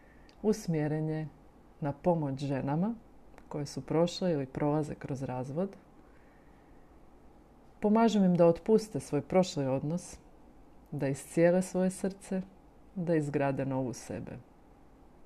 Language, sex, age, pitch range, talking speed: Croatian, female, 40-59, 140-175 Hz, 100 wpm